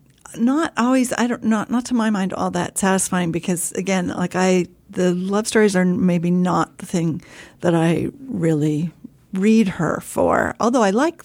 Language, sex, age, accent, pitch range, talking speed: English, female, 50-69, American, 175-210 Hz, 175 wpm